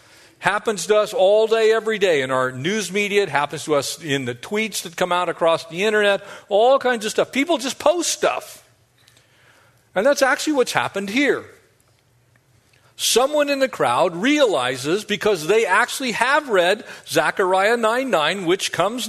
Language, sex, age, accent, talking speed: English, male, 50-69, American, 165 wpm